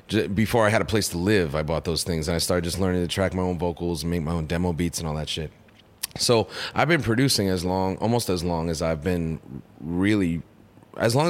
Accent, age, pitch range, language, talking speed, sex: American, 30-49, 85-105 Hz, English, 245 wpm, male